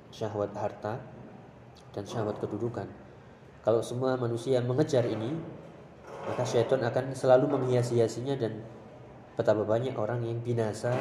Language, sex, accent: Indonesian, male, native